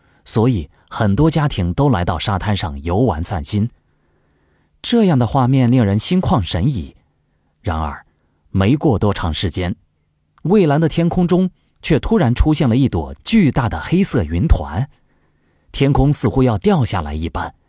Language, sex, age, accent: Chinese, male, 30-49, native